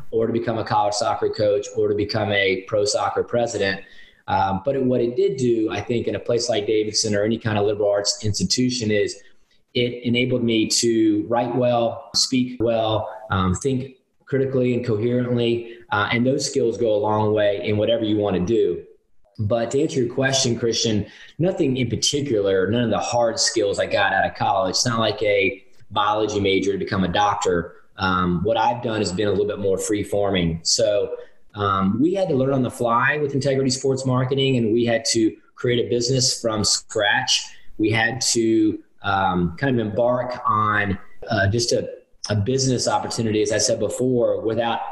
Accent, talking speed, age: American, 190 wpm, 20-39